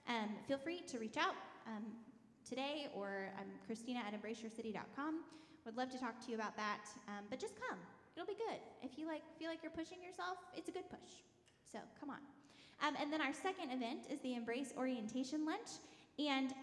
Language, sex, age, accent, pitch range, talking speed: English, female, 10-29, American, 230-295 Hz, 200 wpm